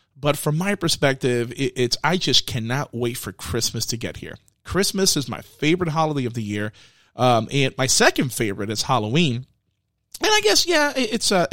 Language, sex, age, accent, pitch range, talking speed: English, male, 30-49, American, 115-165 Hz, 180 wpm